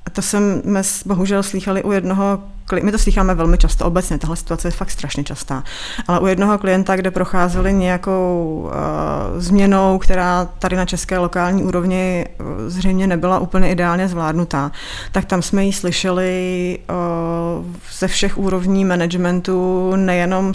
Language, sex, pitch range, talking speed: Czech, female, 180-205 Hz, 150 wpm